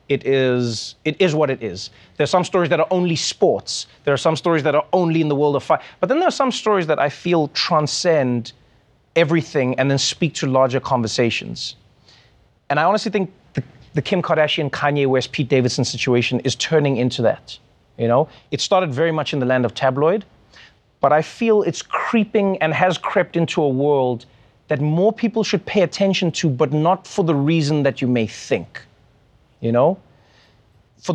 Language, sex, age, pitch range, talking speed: English, male, 30-49, 125-170 Hz, 195 wpm